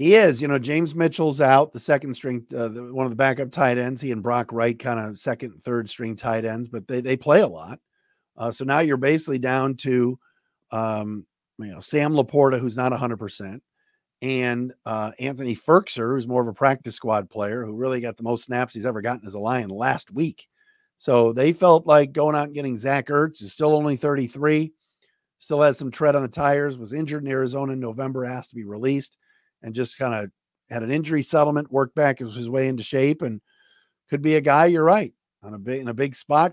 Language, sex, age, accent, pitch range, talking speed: English, male, 50-69, American, 120-150 Hz, 225 wpm